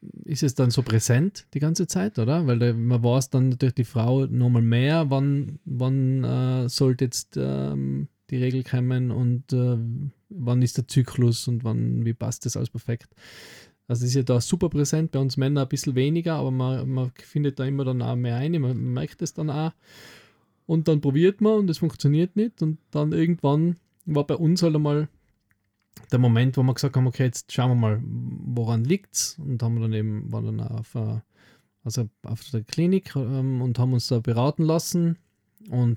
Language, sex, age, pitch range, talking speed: German, male, 20-39, 120-145 Hz, 195 wpm